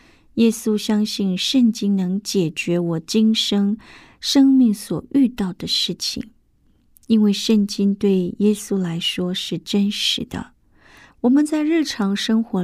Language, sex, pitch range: Chinese, female, 185-240 Hz